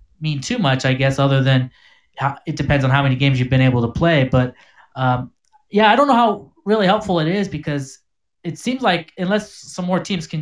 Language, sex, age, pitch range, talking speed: English, male, 20-39, 130-175 Hz, 220 wpm